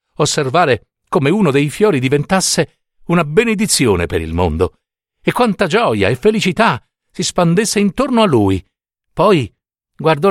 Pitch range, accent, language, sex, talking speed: 115-190 Hz, native, Italian, male, 135 wpm